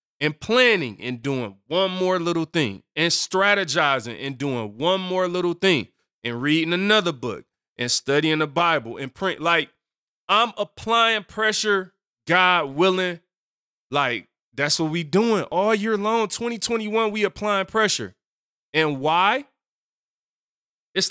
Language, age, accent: English, 20-39, American